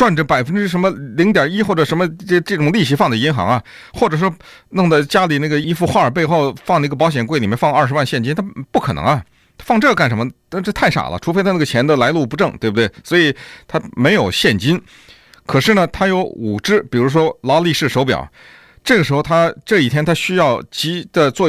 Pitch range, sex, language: 120-180 Hz, male, Chinese